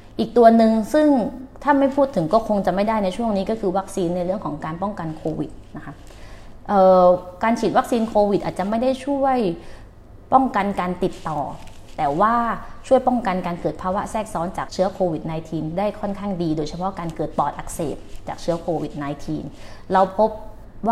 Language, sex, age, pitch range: Thai, female, 20-39, 165-215 Hz